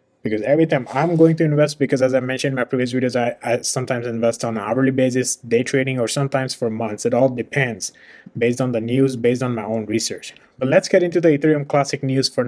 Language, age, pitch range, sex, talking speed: English, 20-39, 120-145 Hz, male, 240 wpm